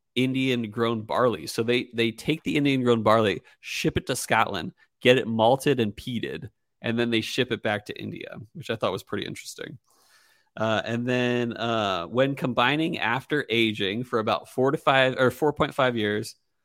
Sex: male